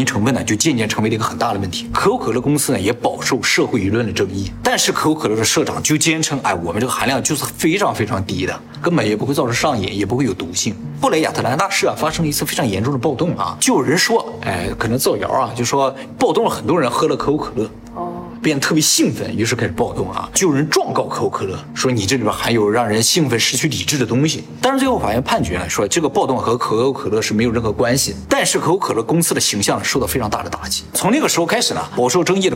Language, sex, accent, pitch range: Chinese, male, native, 110-180 Hz